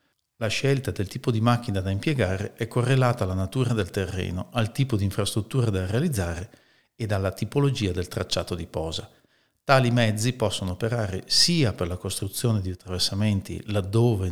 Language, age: Italian, 50-69